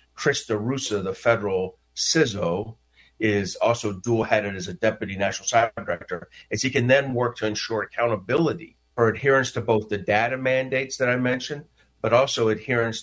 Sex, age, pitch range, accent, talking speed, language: male, 50-69, 105-125 Hz, American, 160 wpm, English